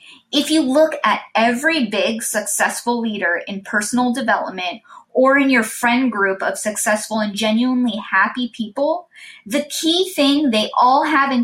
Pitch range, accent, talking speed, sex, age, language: 220-280 Hz, American, 150 wpm, female, 20-39, English